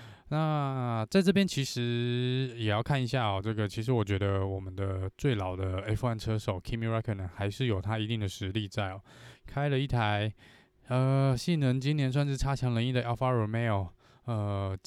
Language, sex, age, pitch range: Chinese, male, 20-39, 100-125 Hz